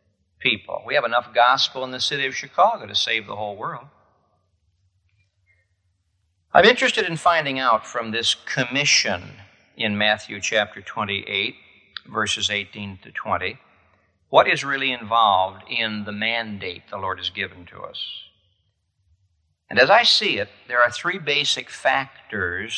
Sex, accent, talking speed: male, American, 140 wpm